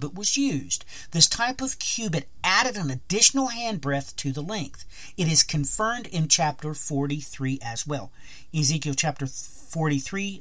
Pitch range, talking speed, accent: 130-175 Hz, 145 wpm, American